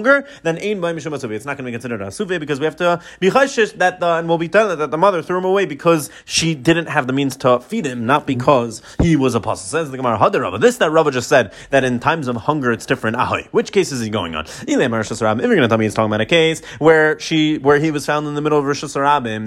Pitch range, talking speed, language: 125-165 Hz, 260 wpm, English